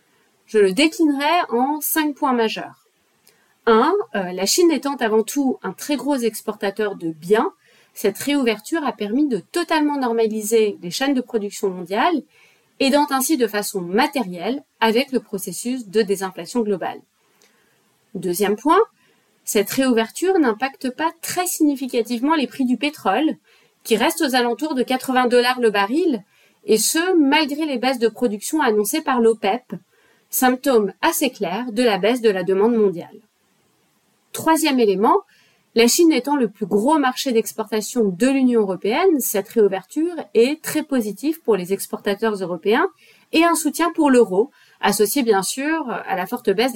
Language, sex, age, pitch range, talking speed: English, female, 30-49, 210-295 Hz, 150 wpm